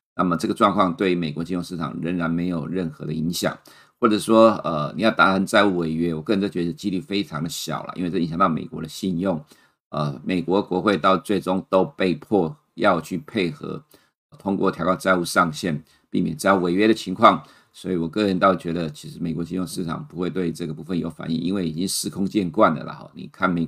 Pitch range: 85-100 Hz